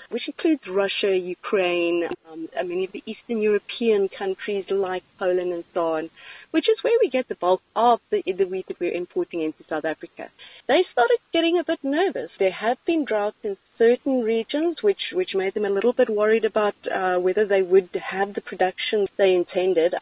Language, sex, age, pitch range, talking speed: English, female, 30-49, 165-255 Hz, 190 wpm